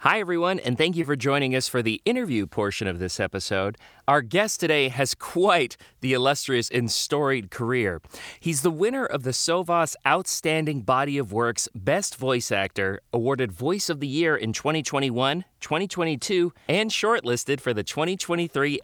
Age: 40-59